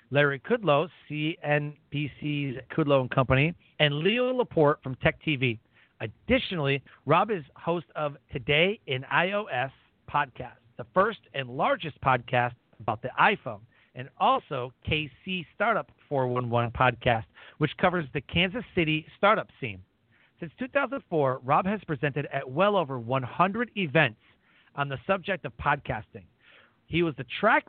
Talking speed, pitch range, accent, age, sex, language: 135 wpm, 130-170 Hz, American, 40-59, male, English